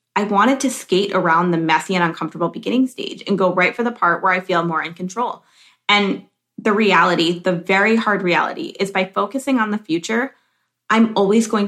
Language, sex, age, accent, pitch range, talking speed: English, female, 20-39, American, 180-230 Hz, 200 wpm